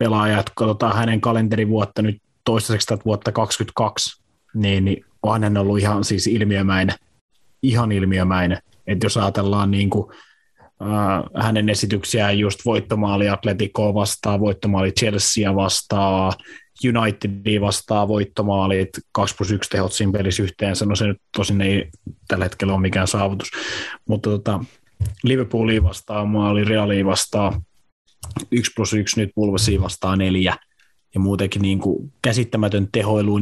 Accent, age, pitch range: native, 30-49, 100-110 Hz